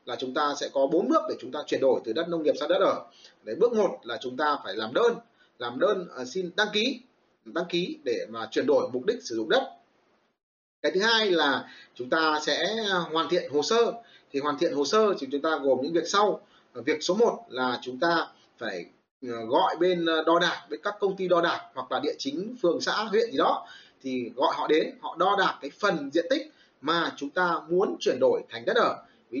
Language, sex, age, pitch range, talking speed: Vietnamese, male, 30-49, 150-230 Hz, 235 wpm